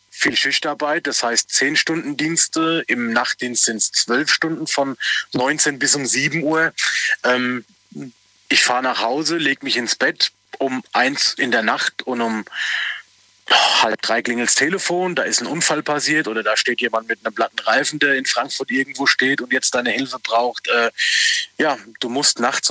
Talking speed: 170 wpm